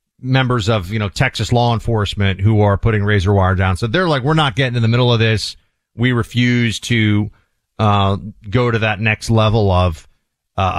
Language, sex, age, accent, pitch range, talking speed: English, male, 40-59, American, 105-145 Hz, 195 wpm